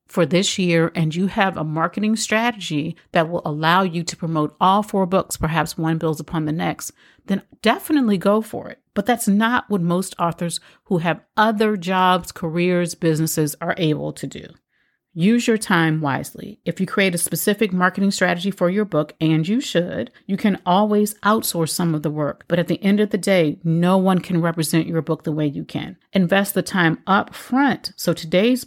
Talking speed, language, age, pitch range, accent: 195 wpm, English, 40-59, 160-205 Hz, American